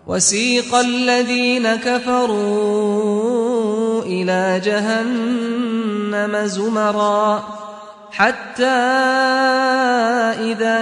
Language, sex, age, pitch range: English, male, 30-49, 210-245 Hz